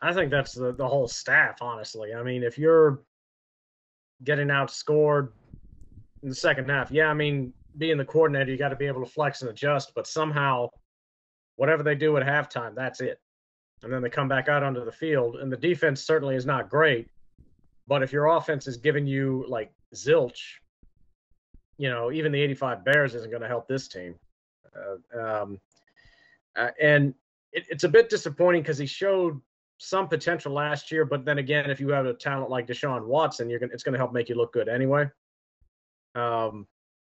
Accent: American